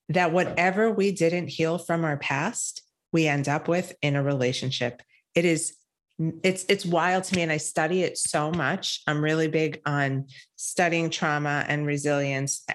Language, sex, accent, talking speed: English, female, American, 165 wpm